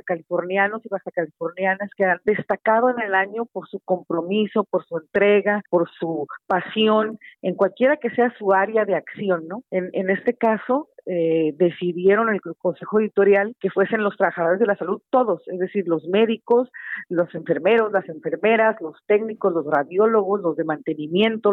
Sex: female